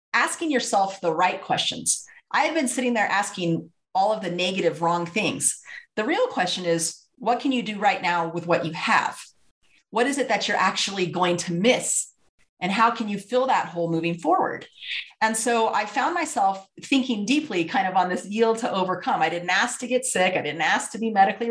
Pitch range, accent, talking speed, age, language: 175-240 Hz, American, 205 wpm, 30-49, English